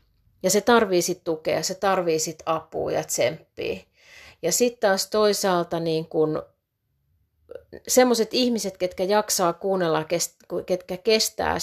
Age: 30-49